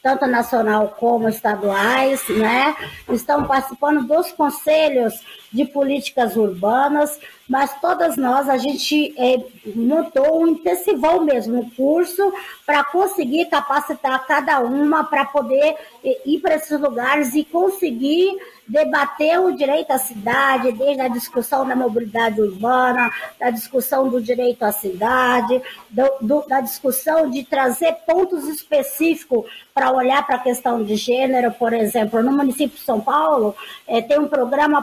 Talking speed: 130 wpm